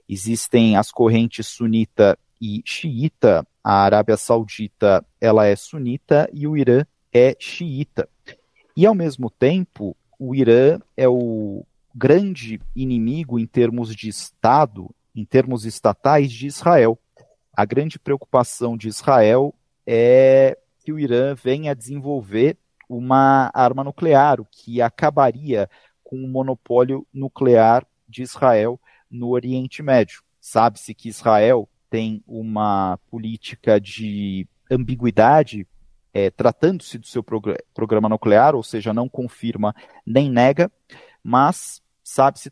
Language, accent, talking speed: Portuguese, Brazilian, 115 wpm